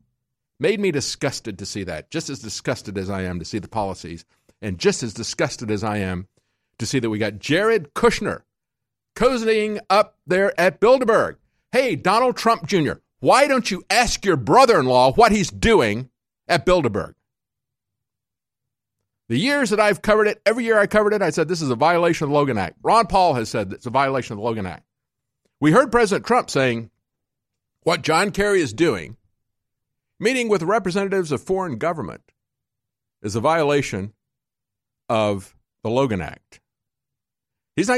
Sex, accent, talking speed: male, American, 170 wpm